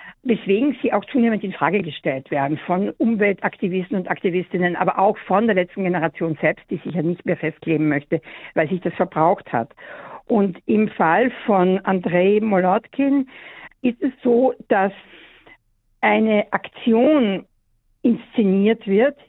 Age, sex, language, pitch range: 60-79, female, German, 185-245 Hz